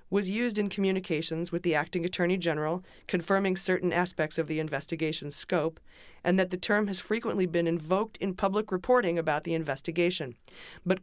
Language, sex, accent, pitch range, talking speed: English, female, American, 165-185 Hz, 170 wpm